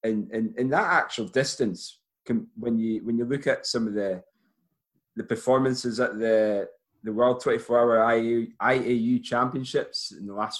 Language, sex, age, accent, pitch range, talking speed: English, male, 30-49, British, 105-135 Hz, 170 wpm